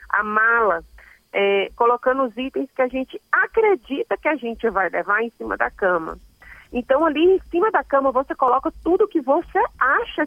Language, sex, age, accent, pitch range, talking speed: Portuguese, female, 40-59, Brazilian, 190-275 Hz, 175 wpm